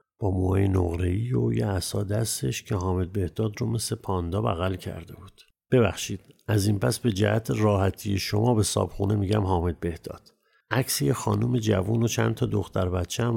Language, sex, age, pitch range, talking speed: Persian, male, 50-69, 100-115 Hz, 165 wpm